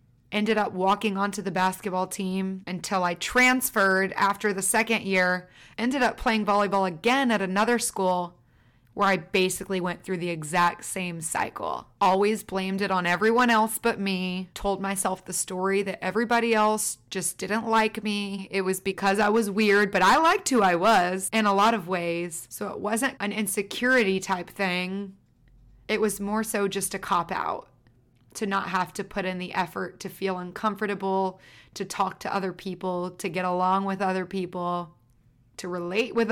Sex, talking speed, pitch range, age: female, 175 wpm, 180-205 Hz, 20-39